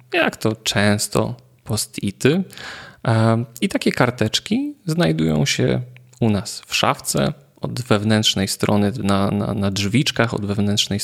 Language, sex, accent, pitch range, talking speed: Polish, male, native, 105-140 Hz, 125 wpm